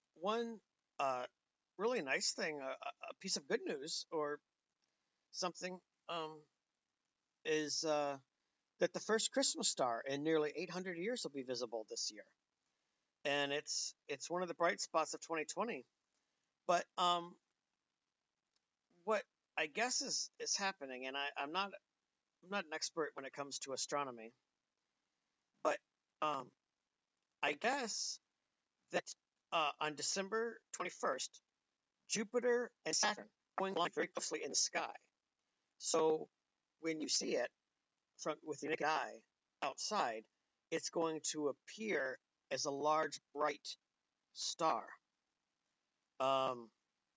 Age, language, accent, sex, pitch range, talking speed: 50-69, English, American, male, 145-210 Hz, 130 wpm